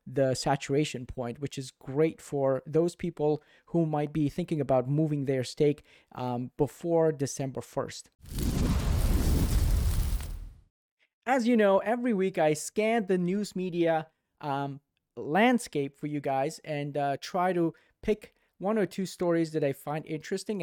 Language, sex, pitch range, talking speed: English, male, 145-185 Hz, 145 wpm